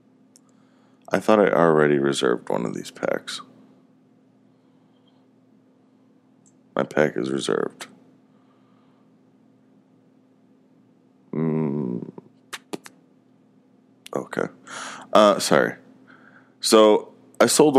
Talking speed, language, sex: 65 wpm, English, male